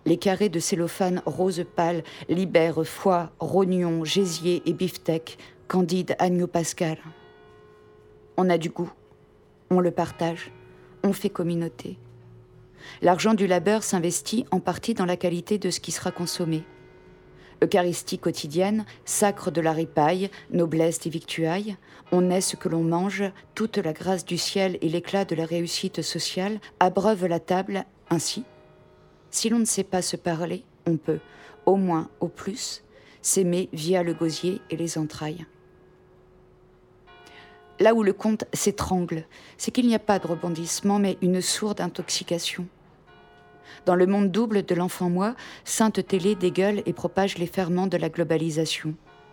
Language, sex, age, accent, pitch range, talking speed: French, female, 50-69, French, 165-190 Hz, 145 wpm